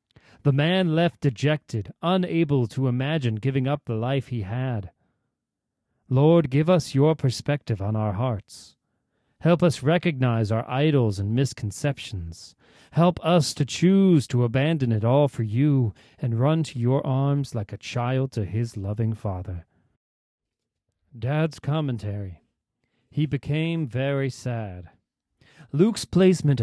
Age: 40-59